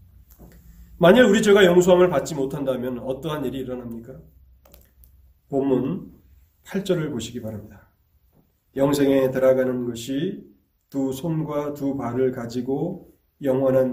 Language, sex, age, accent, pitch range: Korean, male, 30-49, native, 105-135 Hz